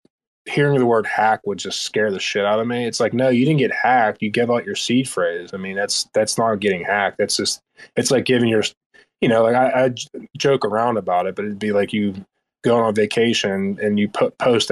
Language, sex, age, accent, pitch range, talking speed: English, male, 20-39, American, 100-115 Hz, 240 wpm